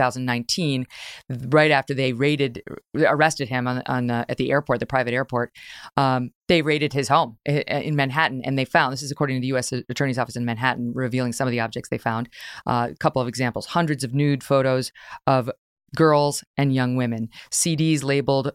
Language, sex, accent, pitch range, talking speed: English, female, American, 125-145 Hz, 190 wpm